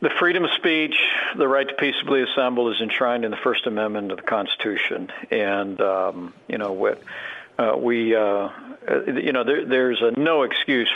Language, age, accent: English, 50-69, American